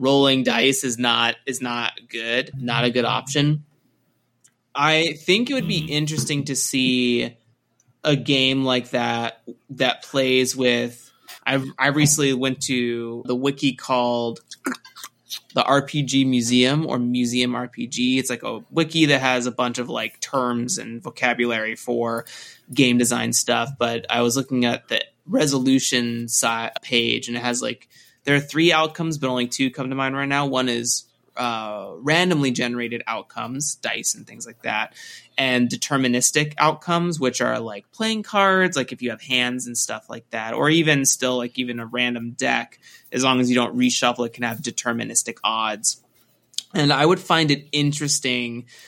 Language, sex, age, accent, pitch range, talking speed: English, male, 20-39, American, 120-140 Hz, 165 wpm